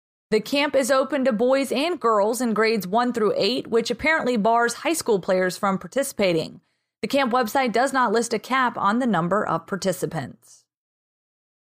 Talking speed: 175 wpm